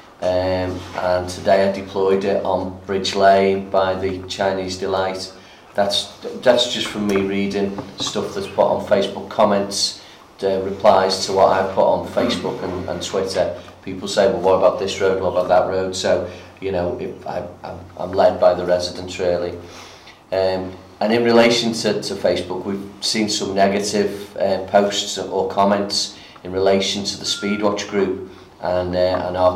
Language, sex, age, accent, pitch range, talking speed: English, male, 30-49, British, 95-100 Hz, 170 wpm